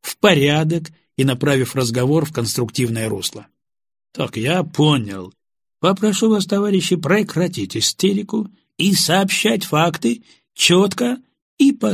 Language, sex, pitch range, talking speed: Russian, male, 125-175 Hz, 110 wpm